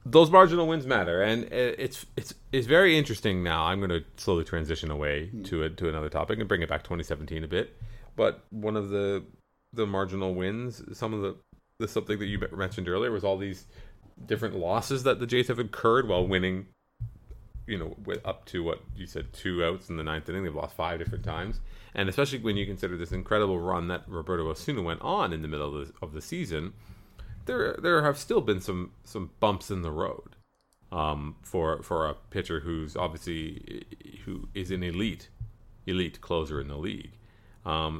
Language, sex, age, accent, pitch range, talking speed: English, male, 30-49, American, 85-110 Hz, 200 wpm